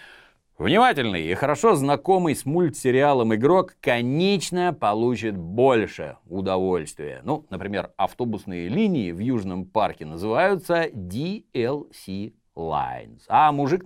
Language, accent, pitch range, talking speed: Russian, native, 85-140 Hz, 100 wpm